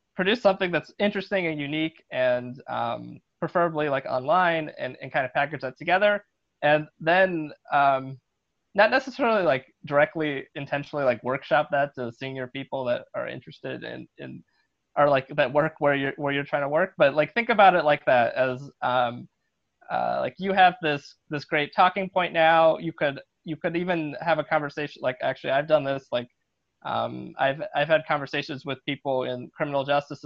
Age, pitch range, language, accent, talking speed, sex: 20-39, 140-180 Hz, English, American, 180 wpm, male